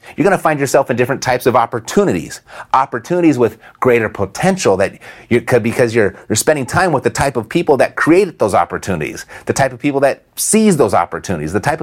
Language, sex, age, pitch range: English, male, 30-49, 110-140 Hz